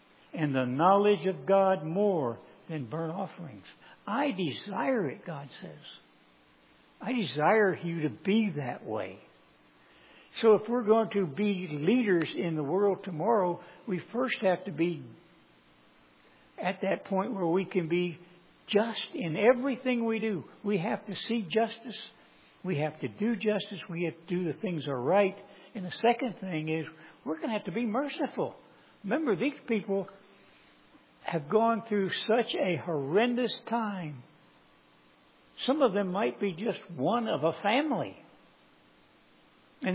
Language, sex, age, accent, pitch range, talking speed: English, male, 60-79, American, 140-215 Hz, 150 wpm